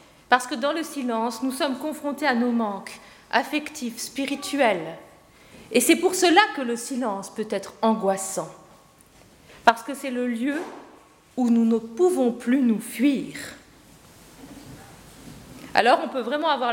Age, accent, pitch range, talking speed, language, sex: 40-59, French, 215-295 Hz, 145 wpm, French, female